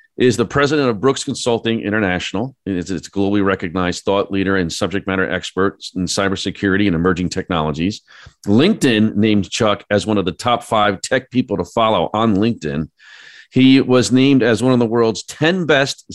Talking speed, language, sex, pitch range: 180 wpm, English, male, 95-125 Hz